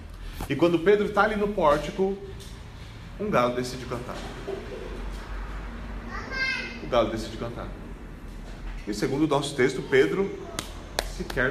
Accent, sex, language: Brazilian, male, Portuguese